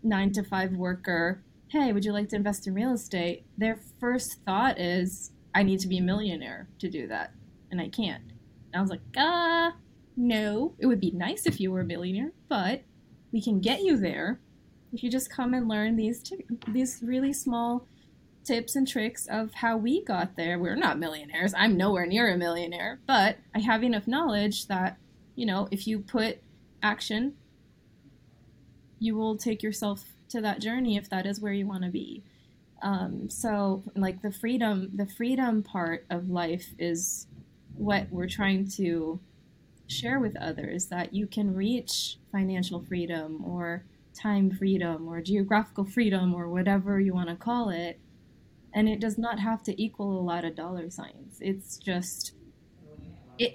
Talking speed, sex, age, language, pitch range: 170 wpm, female, 20-39, English, 185-225 Hz